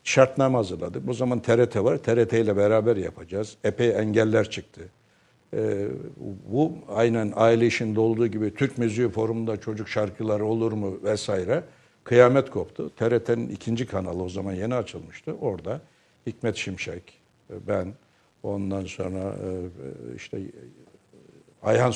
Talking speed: 120 wpm